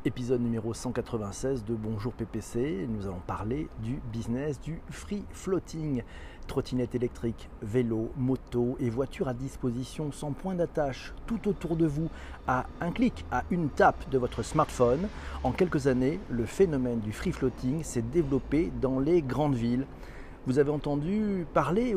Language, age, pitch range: French, 40-59, 120-160 Hz